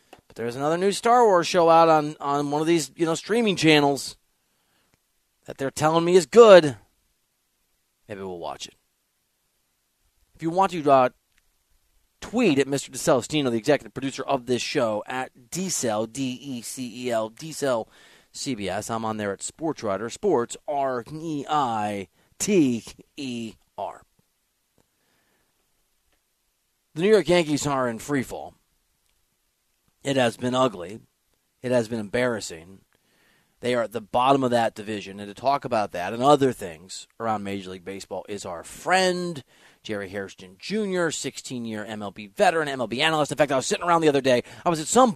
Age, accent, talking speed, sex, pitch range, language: 30-49, American, 150 wpm, male, 110-155 Hz, English